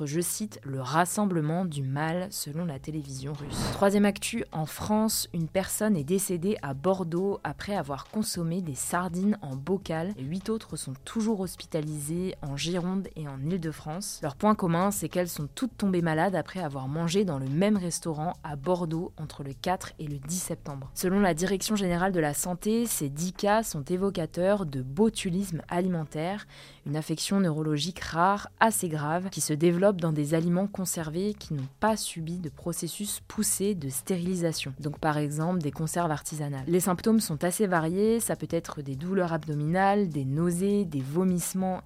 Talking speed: 175 wpm